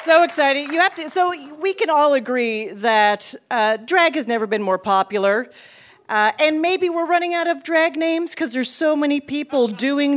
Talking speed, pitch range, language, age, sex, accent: 195 wpm, 210-290 Hz, English, 40-59, female, American